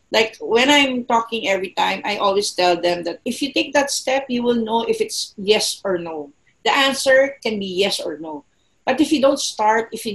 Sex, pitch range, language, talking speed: female, 210-270 Hz, English, 225 wpm